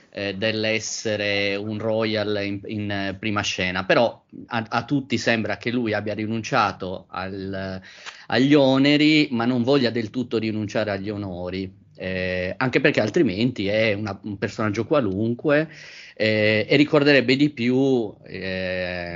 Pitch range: 100-120 Hz